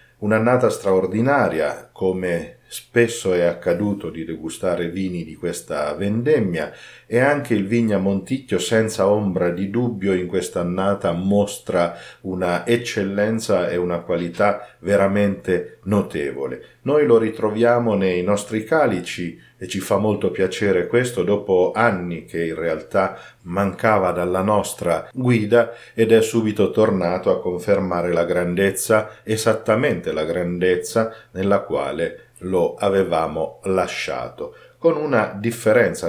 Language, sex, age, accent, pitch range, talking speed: Italian, male, 50-69, native, 90-115 Hz, 120 wpm